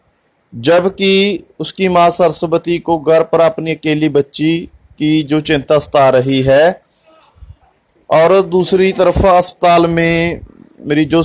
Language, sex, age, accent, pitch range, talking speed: Hindi, male, 30-49, native, 140-170 Hz, 115 wpm